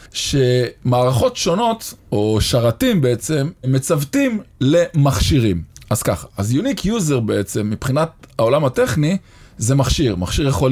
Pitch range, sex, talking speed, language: 115-165 Hz, male, 110 wpm, Hebrew